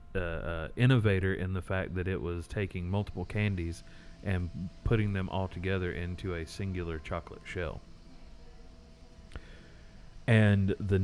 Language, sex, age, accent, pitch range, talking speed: English, male, 30-49, American, 90-110 Hz, 125 wpm